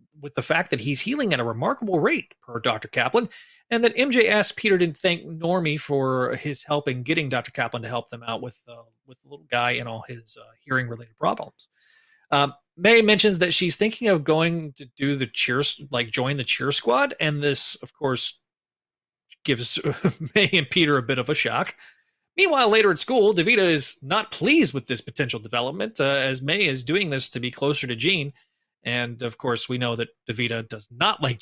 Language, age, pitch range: English, 30-49, 125-185 Hz